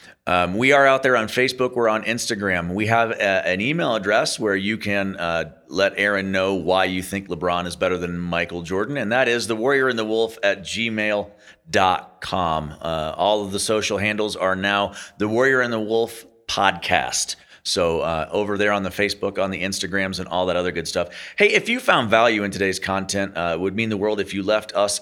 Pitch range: 90-115 Hz